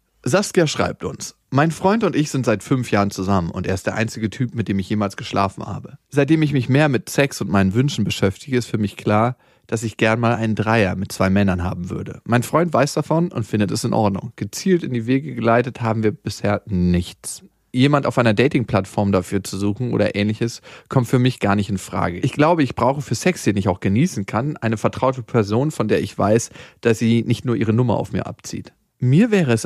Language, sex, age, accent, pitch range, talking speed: German, male, 40-59, German, 105-140 Hz, 230 wpm